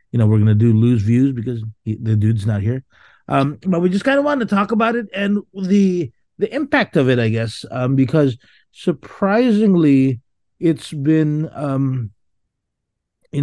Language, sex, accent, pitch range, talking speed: English, male, American, 120-150 Hz, 175 wpm